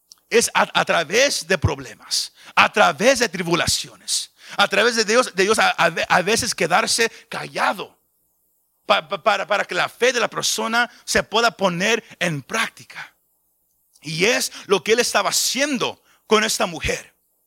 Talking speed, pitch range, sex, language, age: 160 wpm, 185-245 Hz, male, Spanish, 40-59